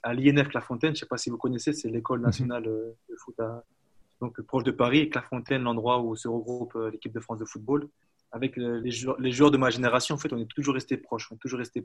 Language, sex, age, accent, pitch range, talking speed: French, male, 20-39, French, 115-135 Hz, 240 wpm